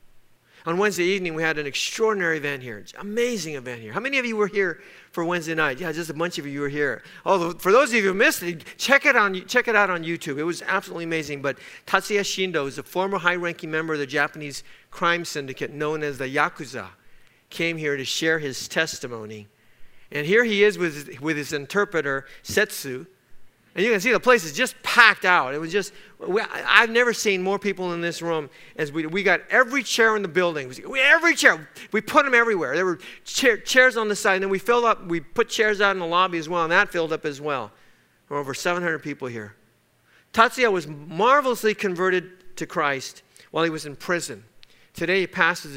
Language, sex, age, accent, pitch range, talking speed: English, male, 50-69, American, 145-200 Hz, 220 wpm